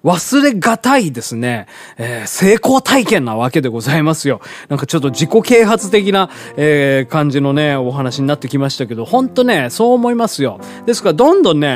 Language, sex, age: Japanese, male, 20-39